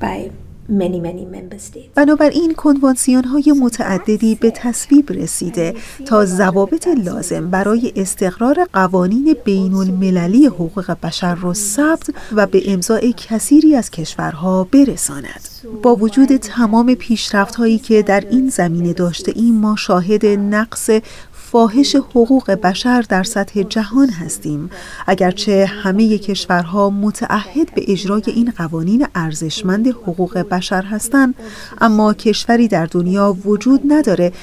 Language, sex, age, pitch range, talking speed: Persian, female, 30-49, 185-235 Hz, 105 wpm